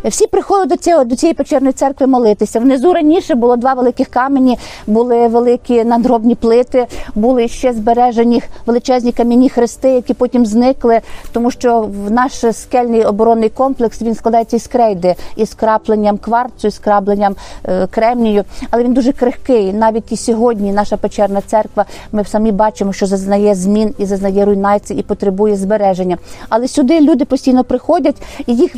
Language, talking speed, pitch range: Ukrainian, 155 wpm, 210-255 Hz